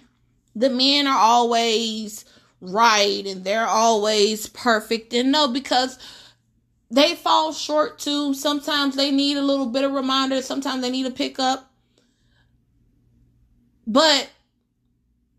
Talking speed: 120 wpm